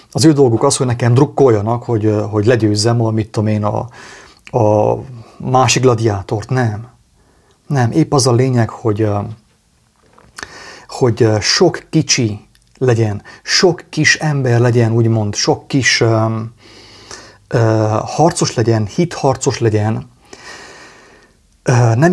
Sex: male